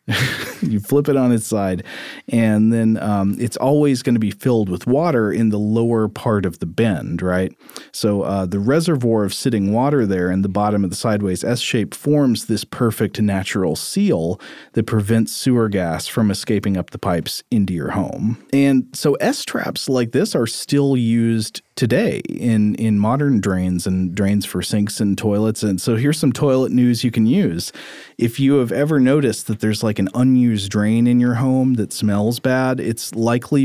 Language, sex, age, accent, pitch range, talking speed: English, male, 40-59, American, 100-125 Hz, 185 wpm